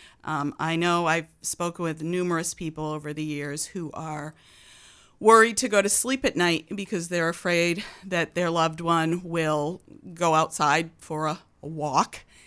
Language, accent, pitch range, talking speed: English, American, 160-195 Hz, 165 wpm